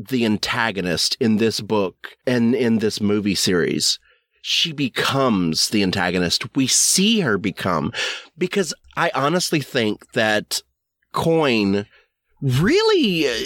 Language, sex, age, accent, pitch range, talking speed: English, male, 30-49, American, 110-165 Hz, 110 wpm